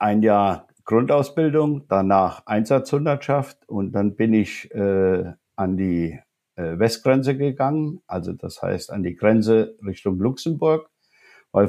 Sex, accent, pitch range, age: male, German, 105-145 Hz, 60-79